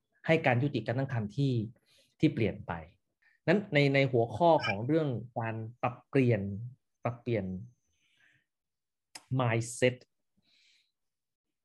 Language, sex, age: Thai, male, 30-49